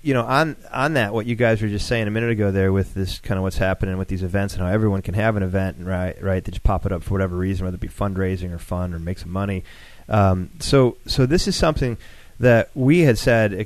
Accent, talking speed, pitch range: American, 270 wpm, 95-115 Hz